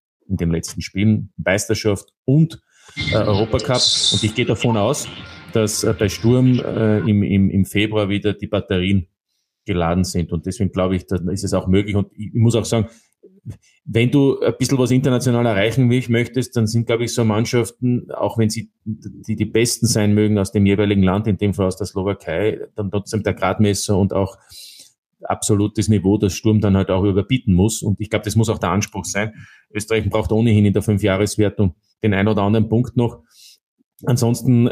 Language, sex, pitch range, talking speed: German, male, 100-115 Hz, 190 wpm